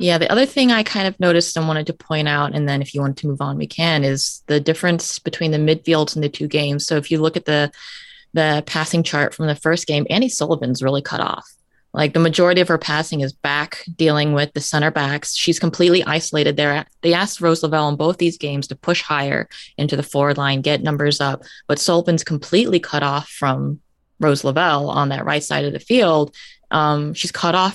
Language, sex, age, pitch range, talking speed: English, female, 20-39, 145-170 Hz, 225 wpm